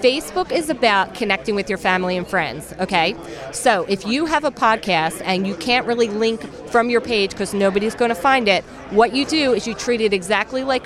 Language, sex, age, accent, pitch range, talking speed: English, female, 40-59, American, 205-255 Hz, 215 wpm